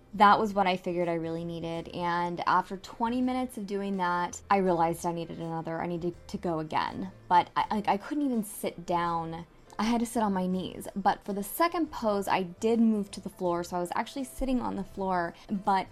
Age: 20-39